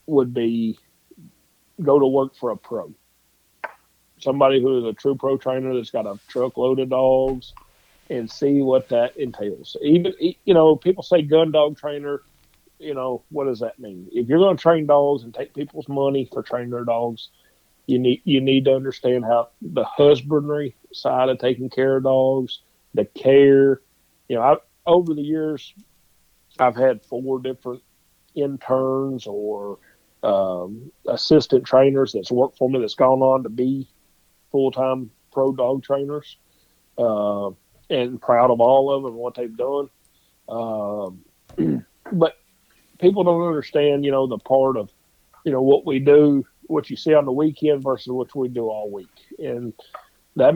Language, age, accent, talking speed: English, 50-69, American, 165 wpm